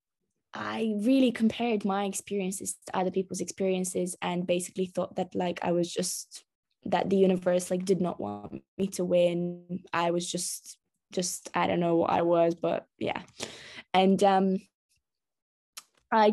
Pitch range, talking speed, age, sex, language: 180-205 Hz, 155 wpm, 10-29, female, English